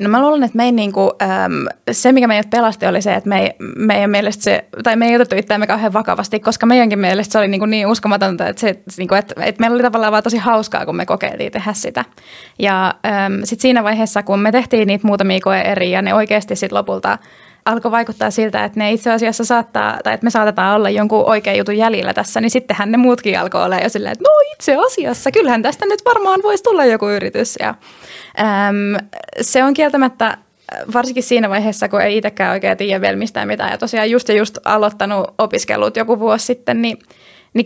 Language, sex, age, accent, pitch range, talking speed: Finnish, female, 20-39, native, 205-240 Hz, 200 wpm